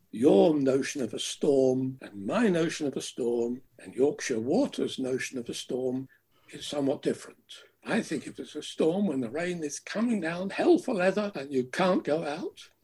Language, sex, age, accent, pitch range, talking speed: English, male, 60-79, British, 115-170 Hz, 190 wpm